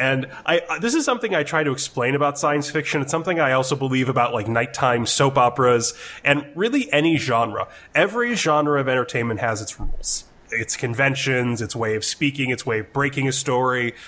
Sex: male